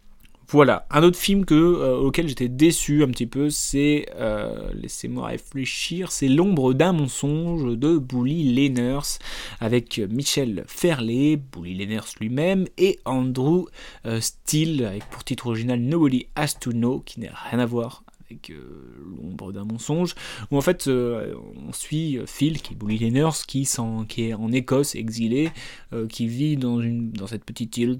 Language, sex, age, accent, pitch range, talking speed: French, male, 20-39, French, 120-155 Hz, 165 wpm